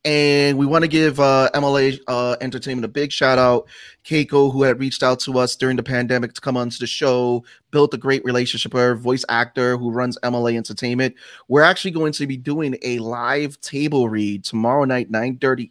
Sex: male